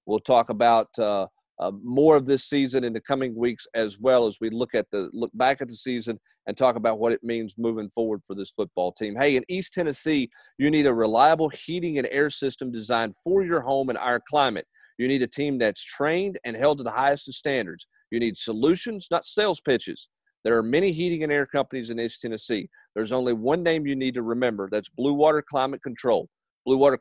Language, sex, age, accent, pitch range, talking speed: English, male, 40-59, American, 115-150 Hz, 220 wpm